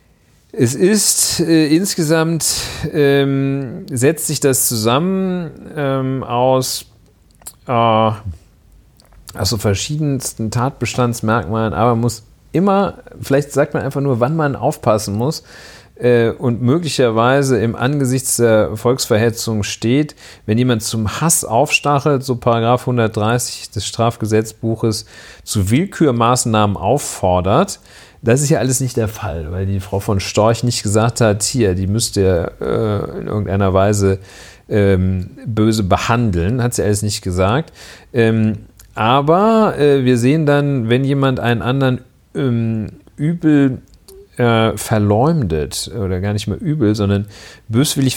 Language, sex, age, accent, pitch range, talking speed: German, male, 40-59, German, 110-140 Hz, 125 wpm